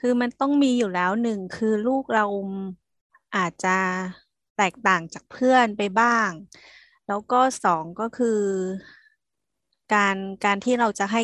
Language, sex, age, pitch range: Thai, female, 20-39, 195-240 Hz